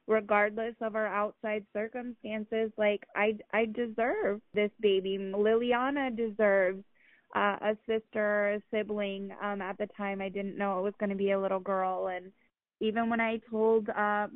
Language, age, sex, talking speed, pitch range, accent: English, 20-39, female, 165 wpm, 200-225 Hz, American